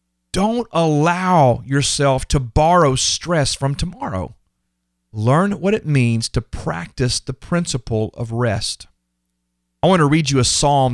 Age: 40-59